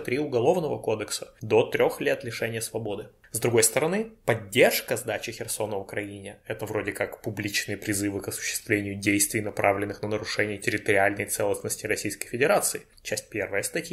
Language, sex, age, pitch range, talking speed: Russian, male, 20-39, 105-130 Hz, 140 wpm